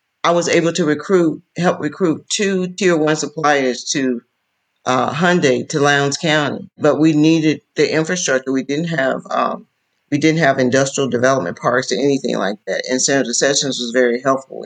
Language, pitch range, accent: English, 130-155 Hz, American